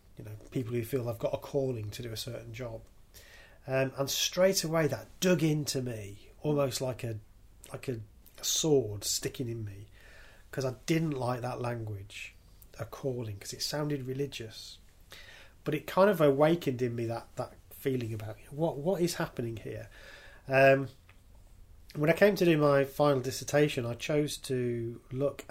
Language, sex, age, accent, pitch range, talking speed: English, male, 30-49, British, 110-140 Hz, 170 wpm